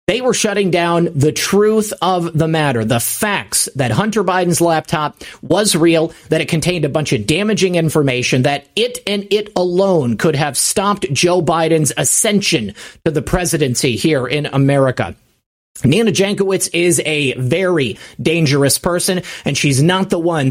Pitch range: 145-190 Hz